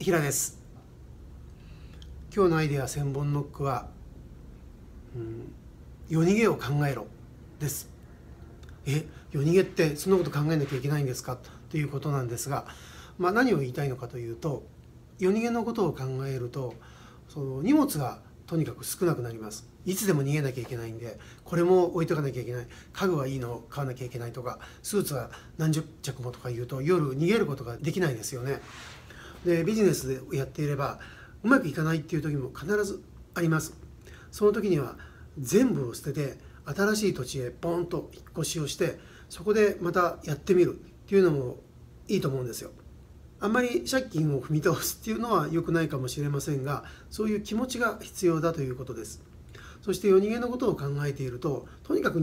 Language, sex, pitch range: Japanese, male, 125-180 Hz